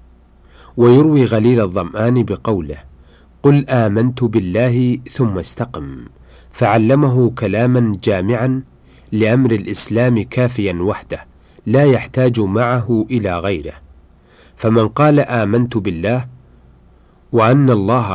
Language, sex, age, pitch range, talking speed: Arabic, male, 40-59, 100-125 Hz, 90 wpm